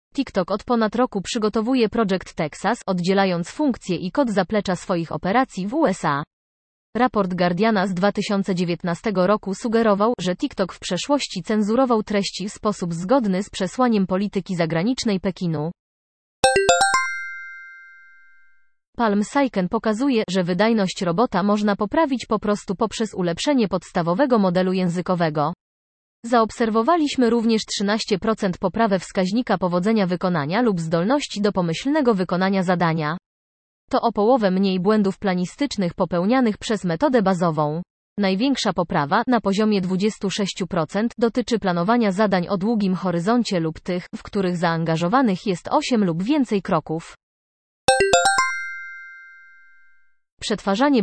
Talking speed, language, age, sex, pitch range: 115 wpm, Polish, 30-49, female, 175-225 Hz